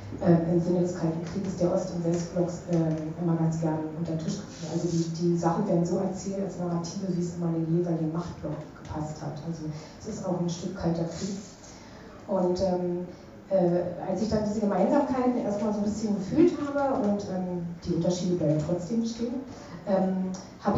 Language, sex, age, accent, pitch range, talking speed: German, female, 30-49, German, 170-210 Hz, 190 wpm